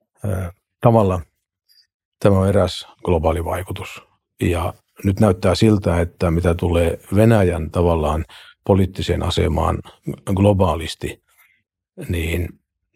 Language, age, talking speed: Finnish, 50-69, 90 wpm